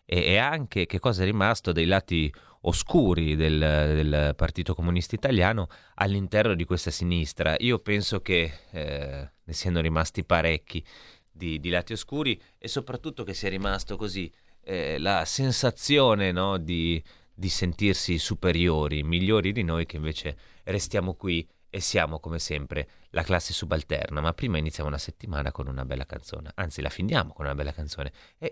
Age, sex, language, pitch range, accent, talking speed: 30-49, male, Italian, 85-115 Hz, native, 155 wpm